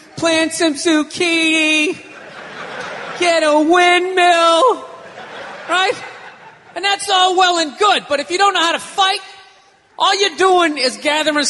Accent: American